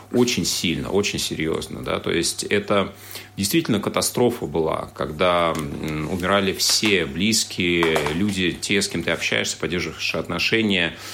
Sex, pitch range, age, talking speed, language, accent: male, 85-110 Hz, 30-49, 125 wpm, Russian, native